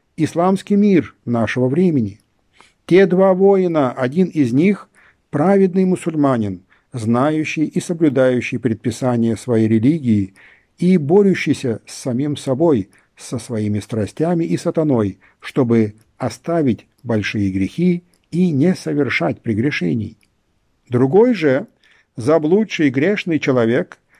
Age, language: 50-69, Ukrainian